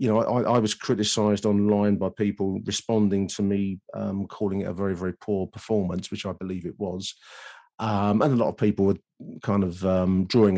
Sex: male